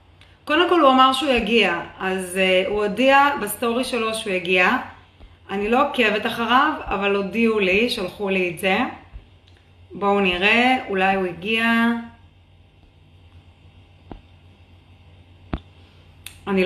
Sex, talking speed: female, 110 wpm